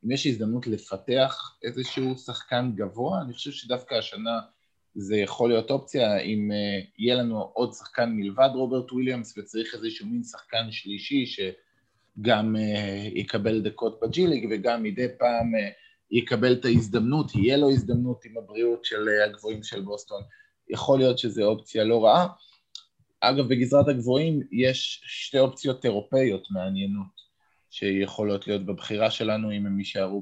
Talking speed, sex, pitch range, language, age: 135 wpm, male, 100-125 Hz, Hebrew, 20-39